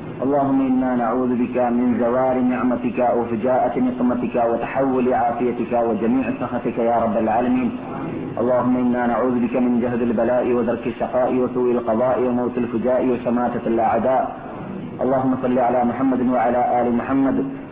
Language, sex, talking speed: Malayalam, male, 130 wpm